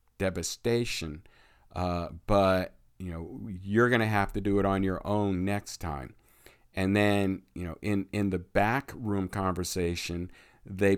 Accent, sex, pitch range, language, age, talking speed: American, male, 90-105 Hz, English, 50-69, 150 wpm